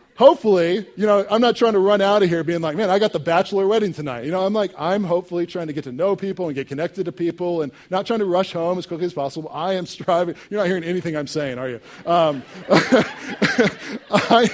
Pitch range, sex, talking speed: 145-190 Hz, male, 250 wpm